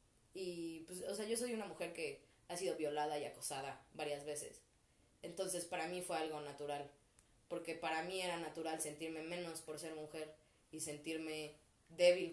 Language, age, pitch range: Spanish, 20-39, 170-230 Hz